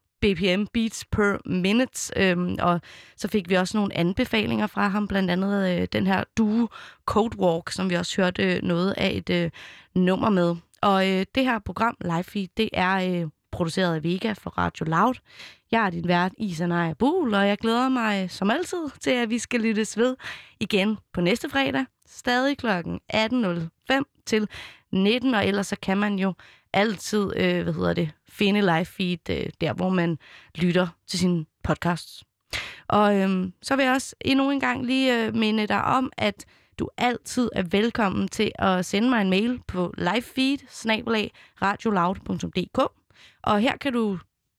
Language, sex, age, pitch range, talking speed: Danish, female, 20-39, 180-235 Hz, 170 wpm